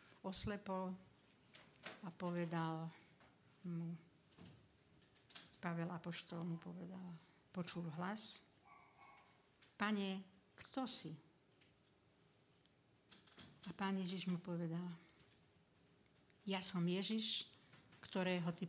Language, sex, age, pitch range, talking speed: Slovak, female, 60-79, 165-190 Hz, 70 wpm